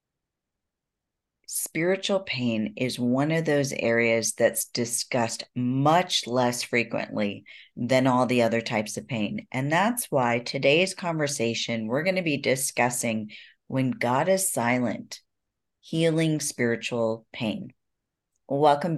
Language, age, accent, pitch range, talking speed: English, 40-59, American, 115-150 Hz, 115 wpm